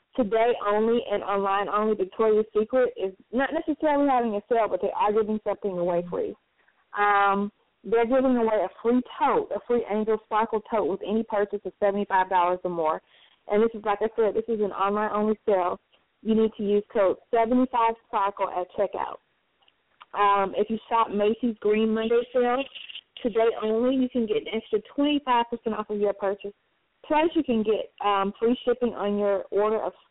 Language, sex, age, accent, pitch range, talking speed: English, female, 20-39, American, 200-235 Hz, 180 wpm